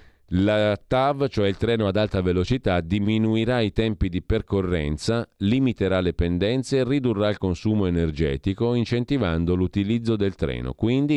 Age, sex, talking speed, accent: 40-59, male, 140 wpm, native